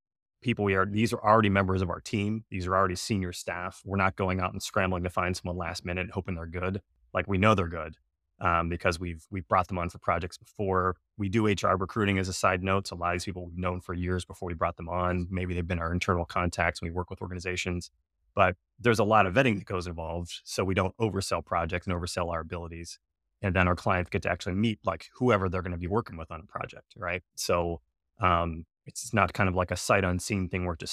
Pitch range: 90-100 Hz